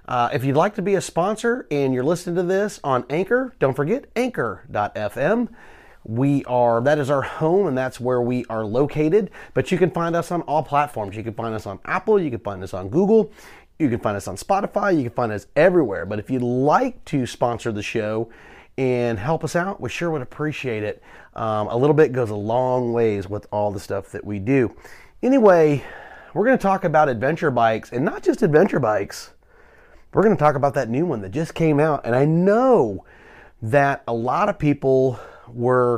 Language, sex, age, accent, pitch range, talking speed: English, male, 30-49, American, 120-175 Hz, 210 wpm